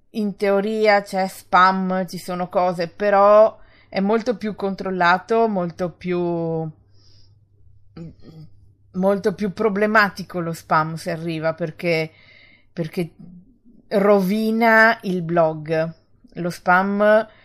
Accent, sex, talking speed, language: native, female, 100 wpm, Italian